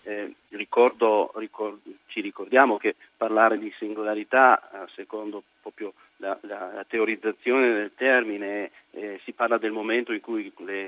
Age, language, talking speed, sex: 40-59, Italian, 145 wpm, male